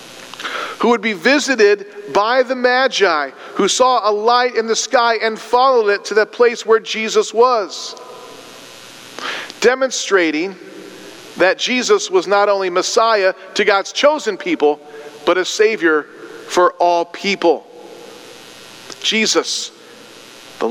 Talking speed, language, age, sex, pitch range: 120 wpm, English, 40-59, male, 180-285 Hz